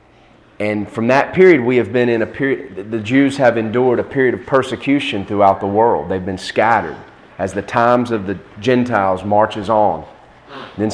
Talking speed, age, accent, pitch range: 185 wpm, 30-49, American, 105-135 Hz